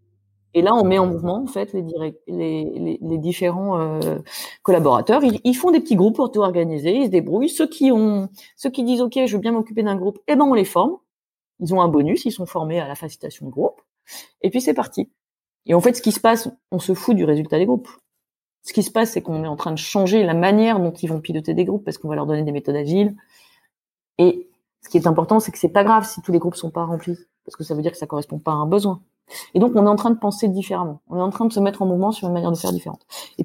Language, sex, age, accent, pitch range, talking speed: French, female, 30-49, French, 165-220 Hz, 280 wpm